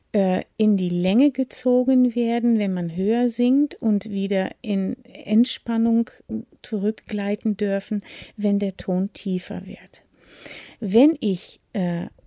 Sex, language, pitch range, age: female, German, 190-230 Hz, 50-69